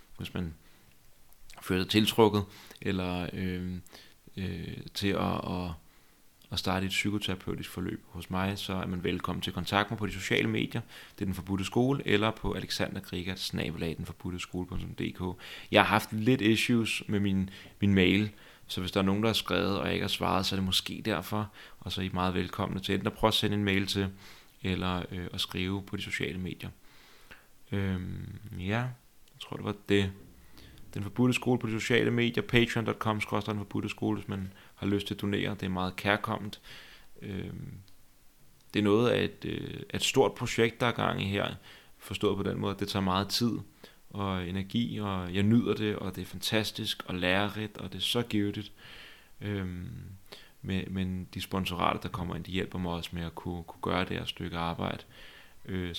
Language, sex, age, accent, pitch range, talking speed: Danish, male, 30-49, native, 90-105 Hz, 190 wpm